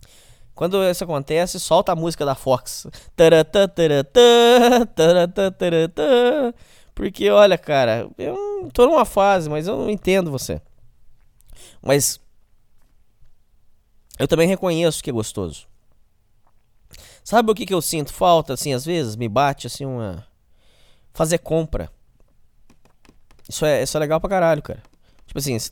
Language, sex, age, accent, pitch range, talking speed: Portuguese, male, 20-39, Brazilian, 110-170 Hz, 125 wpm